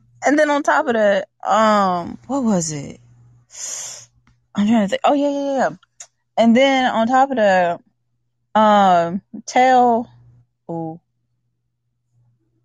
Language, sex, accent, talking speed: English, female, American, 130 wpm